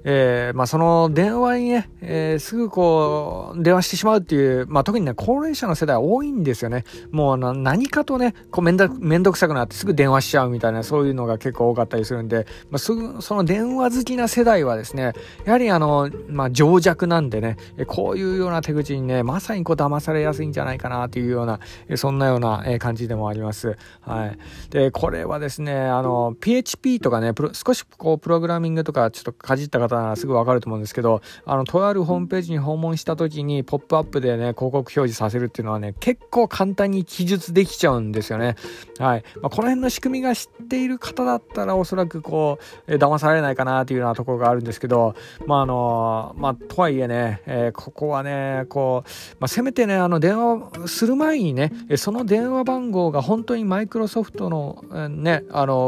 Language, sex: Japanese, male